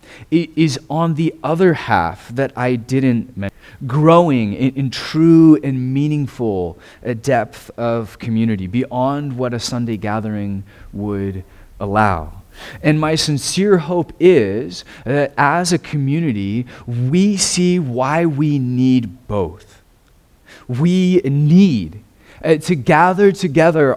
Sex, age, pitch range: male, 30-49, 110-155 Hz